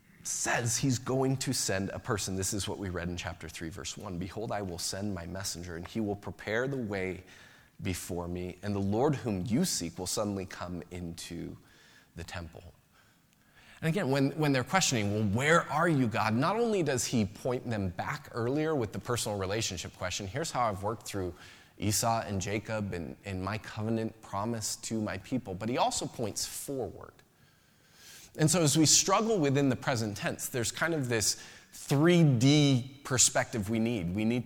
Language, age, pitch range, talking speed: English, 30-49, 100-130 Hz, 185 wpm